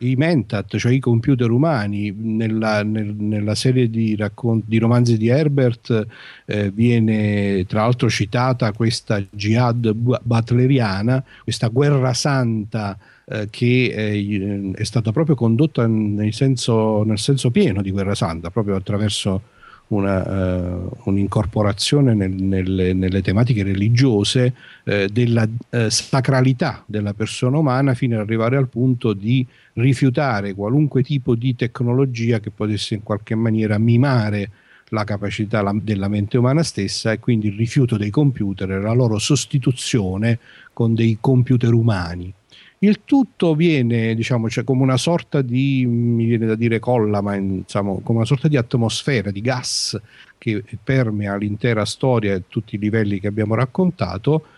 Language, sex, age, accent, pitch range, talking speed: Italian, male, 50-69, native, 105-130 Hz, 140 wpm